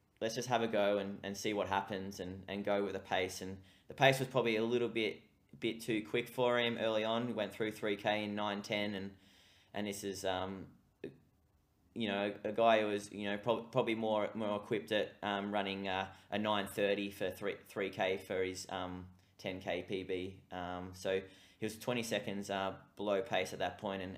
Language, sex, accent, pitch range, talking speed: English, male, Australian, 95-110 Hz, 205 wpm